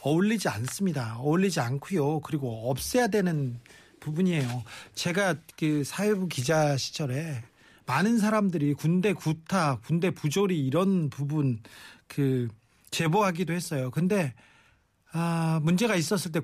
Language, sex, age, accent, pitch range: Korean, male, 40-59, native, 145-190 Hz